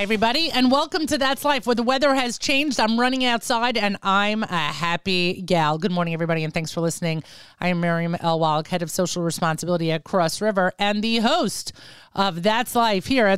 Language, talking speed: English, 200 wpm